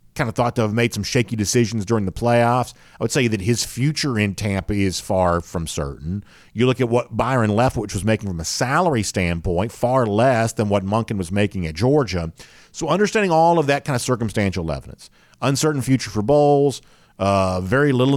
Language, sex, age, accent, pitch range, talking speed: English, male, 40-59, American, 95-130 Hz, 200 wpm